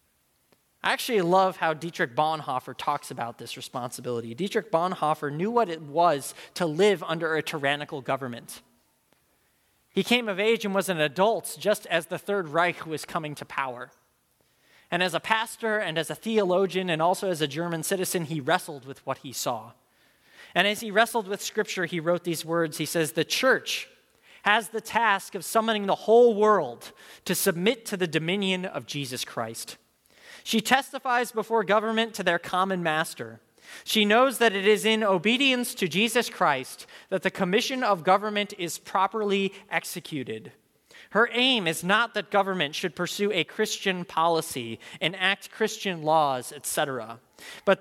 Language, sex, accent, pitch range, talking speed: English, male, American, 160-215 Hz, 165 wpm